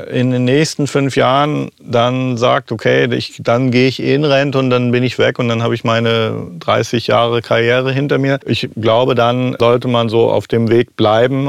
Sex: male